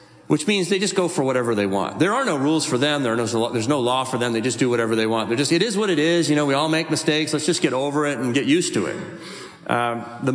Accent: American